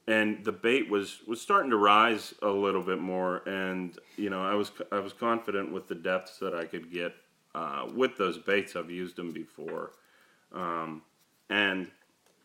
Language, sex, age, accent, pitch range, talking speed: English, male, 30-49, American, 90-105 Hz, 180 wpm